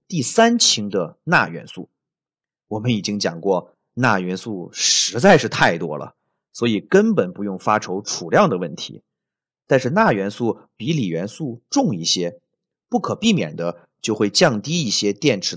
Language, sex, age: Chinese, male, 30-49